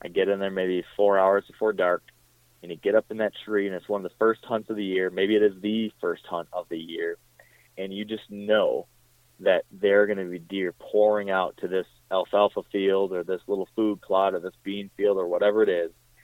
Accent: American